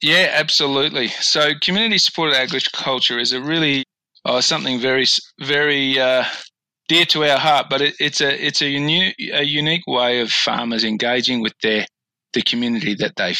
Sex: male